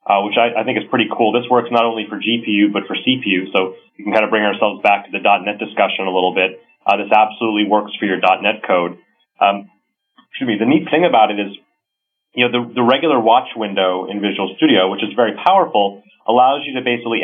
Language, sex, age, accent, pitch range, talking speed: English, male, 30-49, American, 100-115 Hz, 235 wpm